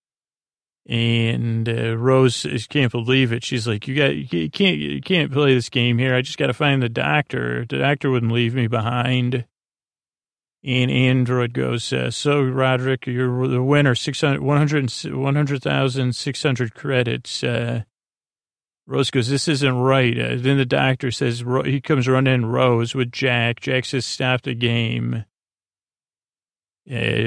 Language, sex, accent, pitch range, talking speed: English, male, American, 115-130 Hz, 150 wpm